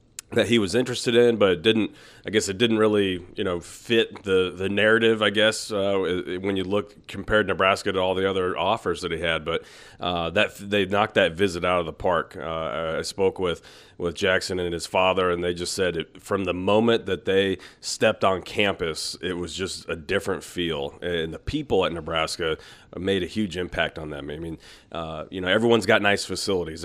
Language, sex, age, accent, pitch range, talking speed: English, male, 30-49, American, 85-105 Hz, 210 wpm